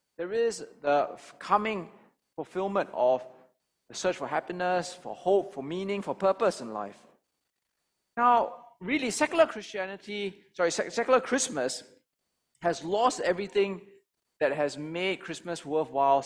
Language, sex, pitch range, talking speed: English, male, 165-240 Hz, 120 wpm